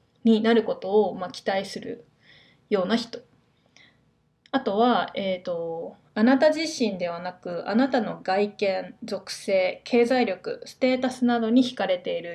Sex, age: female, 20-39